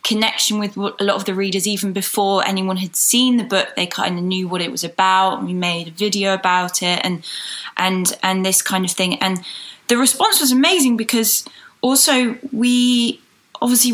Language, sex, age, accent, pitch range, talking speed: English, female, 10-29, British, 190-225 Hz, 190 wpm